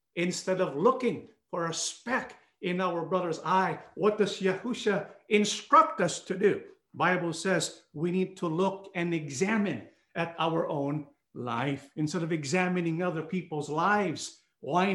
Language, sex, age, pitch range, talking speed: English, male, 50-69, 170-210 Hz, 150 wpm